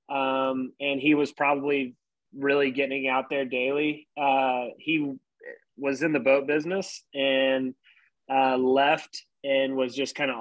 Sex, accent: male, American